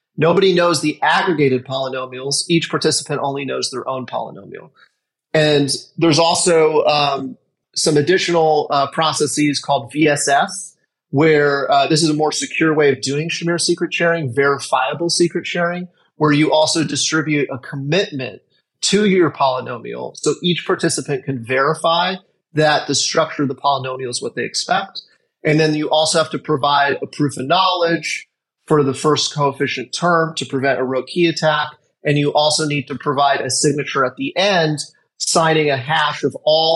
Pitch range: 140-170 Hz